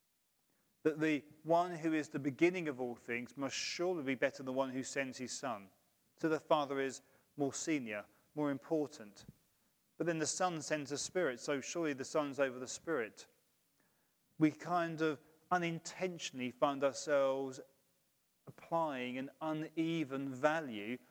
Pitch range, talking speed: 130-160 Hz, 150 wpm